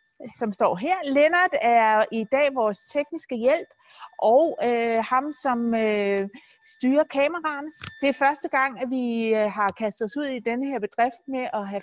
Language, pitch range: Danish, 230-320 Hz